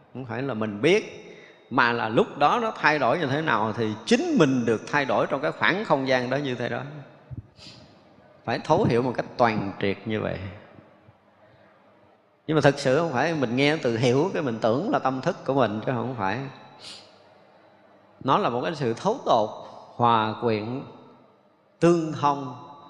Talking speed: 185 wpm